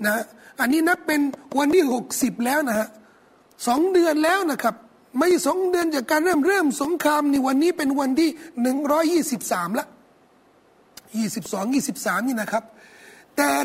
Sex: male